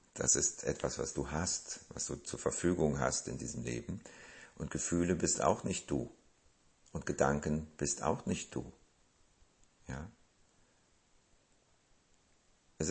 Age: 50-69